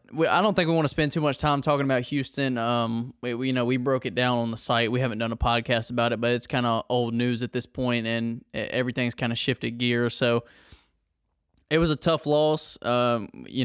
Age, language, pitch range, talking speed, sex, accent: 20-39, English, 120-140 Hz, 245 wpm, male, American